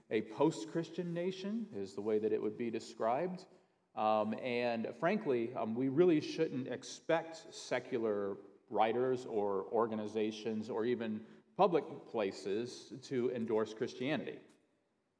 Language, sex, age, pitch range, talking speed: English, male, 40-59, 115-170 Hz, 120 wpm